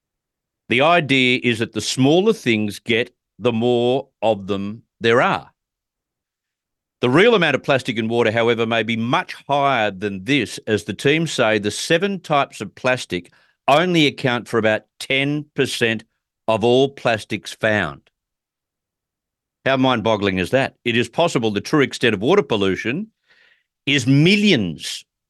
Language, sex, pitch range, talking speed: English, male, 105-140 Hz, 145 wpm